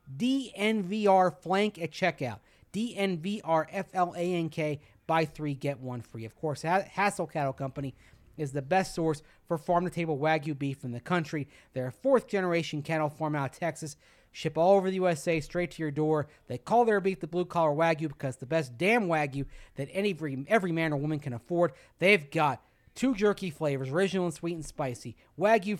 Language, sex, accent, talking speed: English, male, American, 190 wpm